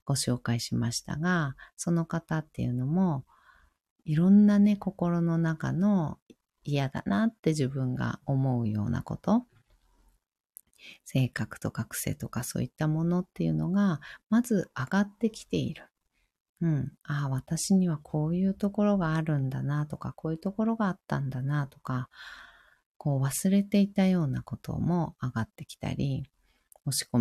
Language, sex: Japanese, female